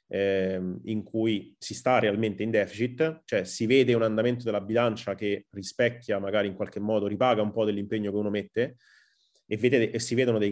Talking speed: 190 wpm